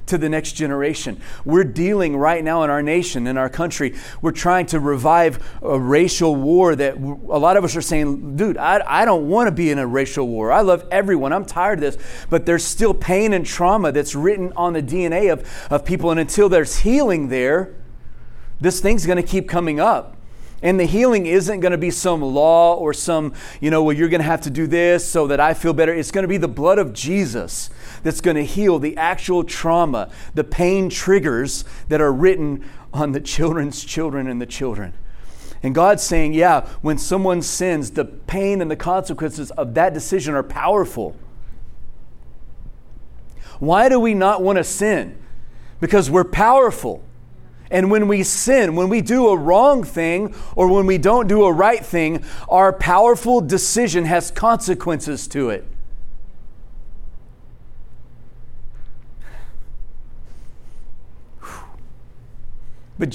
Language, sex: English, male